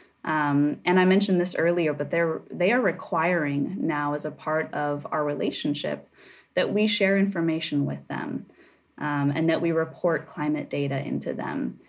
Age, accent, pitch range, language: 20-39, American, 150-185 Hz, English